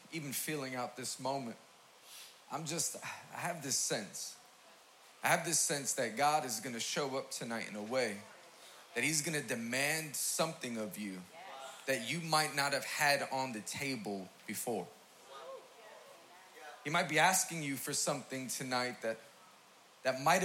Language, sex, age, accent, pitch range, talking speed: English, male, 30-49, American, 130-165 Hz, 160 wpm